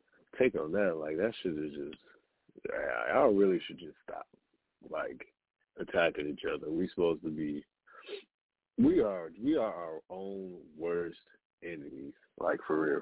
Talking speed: 150 wpm